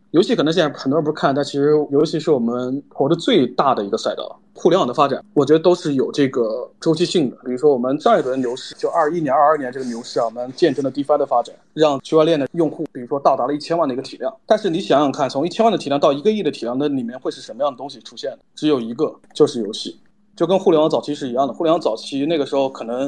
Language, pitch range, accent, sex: Chinese, 130-160 Hz, native, male